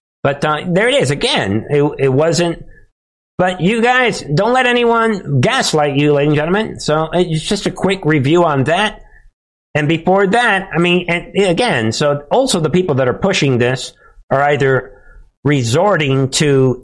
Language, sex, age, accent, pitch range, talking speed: English, male, 50-69, American, 135-175 Hz, 165 wpm